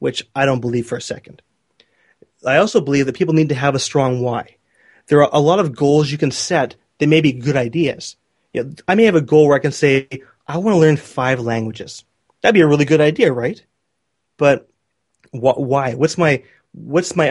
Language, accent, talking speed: English, American, 205 wpm